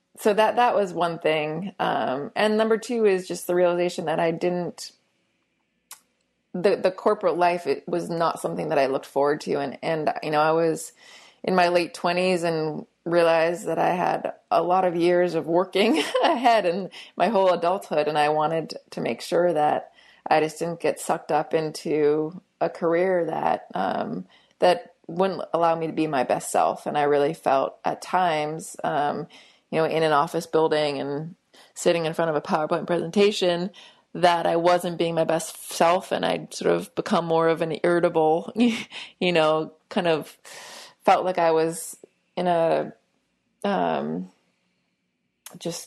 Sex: female